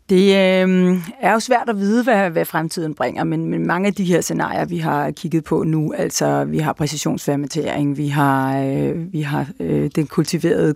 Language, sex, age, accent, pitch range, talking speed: Danish, female, 30-49, native, 155-195 Hz, 175 wpm